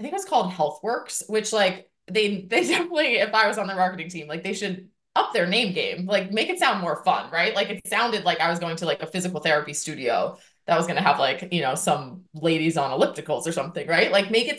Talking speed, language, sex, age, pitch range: 260 wpm, English, female, 20-39, 175-235 Hz